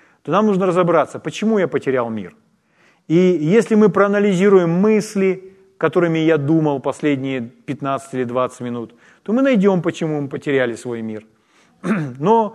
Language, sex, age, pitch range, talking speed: Ukrainian, male, 30-49, 150-195 Hz, 145 wpm